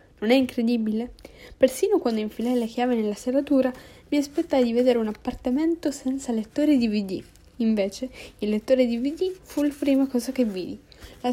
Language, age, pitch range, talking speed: Italian, 10-29, 215-270 Hz, 160 wpm